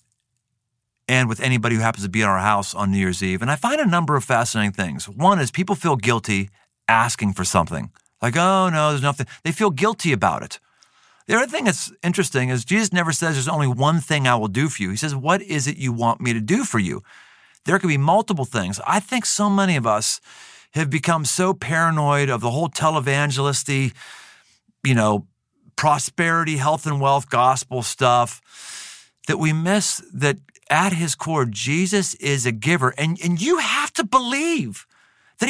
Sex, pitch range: male, 125-195 Hz